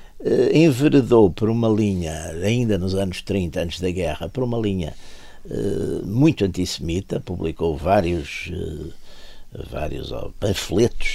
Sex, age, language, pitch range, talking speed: male, 60-79, Portuguese, 80-100 Hz, 110 wpm